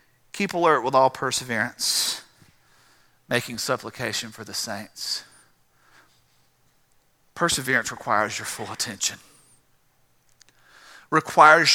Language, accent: English, American